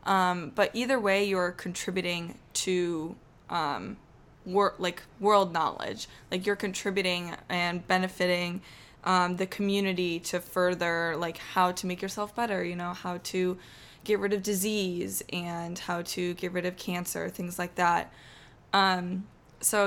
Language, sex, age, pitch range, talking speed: English, female, 20-39, 175-200 Hz, 140 wpm